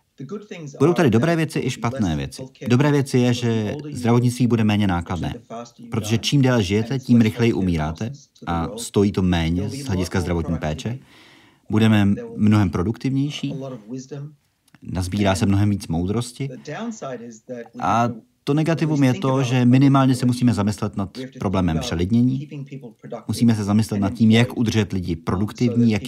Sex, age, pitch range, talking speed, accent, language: male, 30-49, 100-130 Hz, 140 wpm, native, Czech